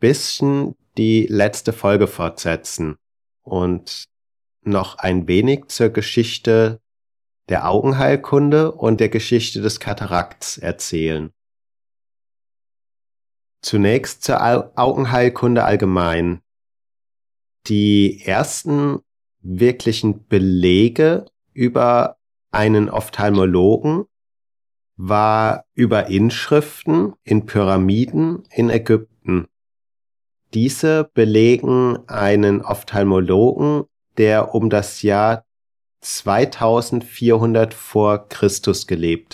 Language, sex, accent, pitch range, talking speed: German, male, German, 100-115 Hz, 75 wpm